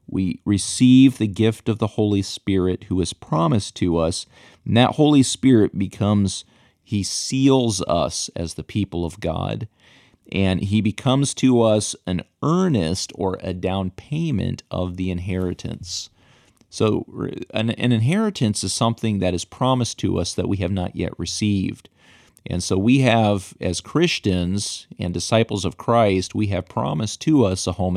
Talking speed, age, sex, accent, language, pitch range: 160 wpm, 40-59, male, American, English, 95-120 Hz